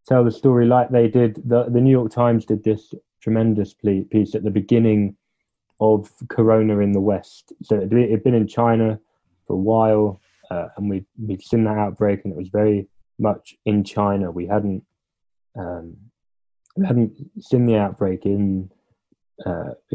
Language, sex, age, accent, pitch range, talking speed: English, male, 20-39, British, 100-110 Hz, 165 wpm